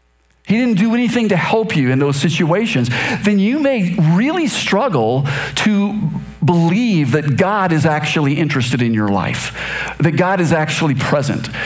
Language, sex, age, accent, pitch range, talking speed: English, male, 50-69, American, 125-175 Hz, 155 wpm